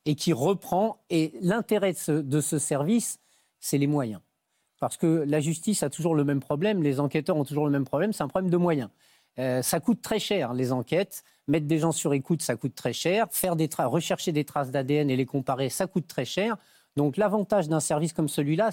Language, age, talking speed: French, 40-59, 225 wpm